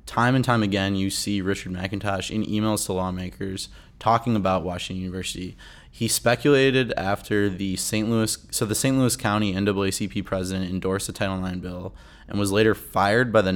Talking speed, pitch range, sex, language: 175 wpm, 95-110 Hz, male, English